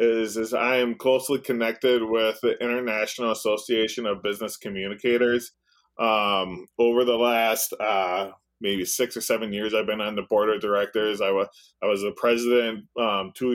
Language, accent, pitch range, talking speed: English, American, 105-120 Hz, 165 wpm